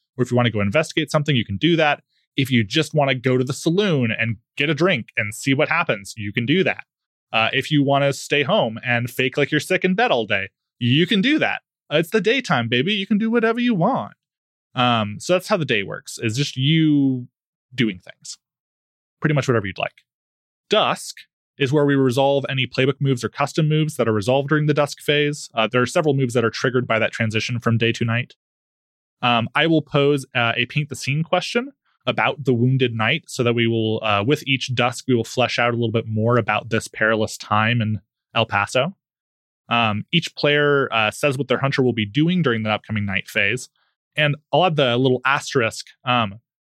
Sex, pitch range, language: male, 115-150 Hz, English